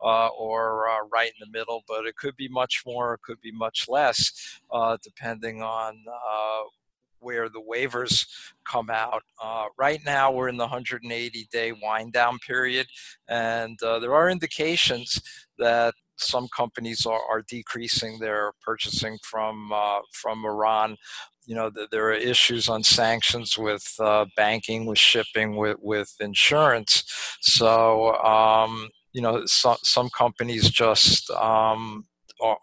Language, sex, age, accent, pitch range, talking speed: English, male, 50-69, American, 110-125 Hz, 145 wpm